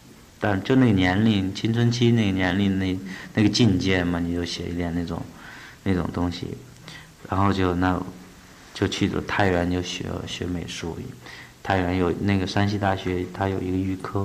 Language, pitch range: Chinese, 90-110 Hz